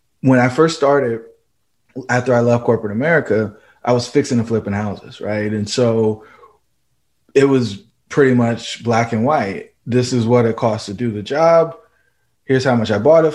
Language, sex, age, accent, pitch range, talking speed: English, male, 20-39, American, 110-125 Hz, 180 wpm